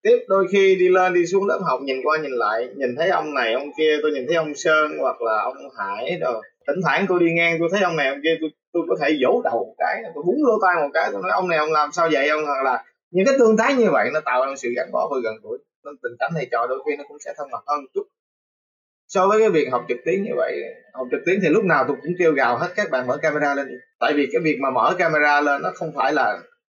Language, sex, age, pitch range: Vietnamese, male, 20-39, 150-210 Hz